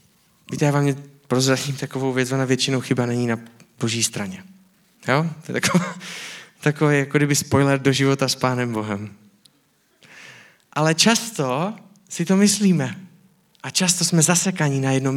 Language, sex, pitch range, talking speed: Czech, male, 115-150 Hz, 145 wpm